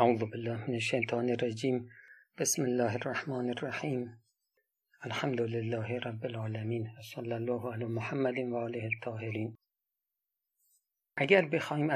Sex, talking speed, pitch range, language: male, 110 wpm, 115-145 Hz, Persian